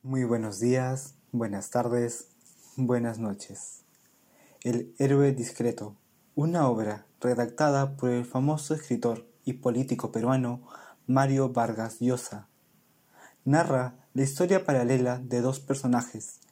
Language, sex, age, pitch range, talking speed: Spanish, male, 20-39, 120-145 Hz, 110 wpm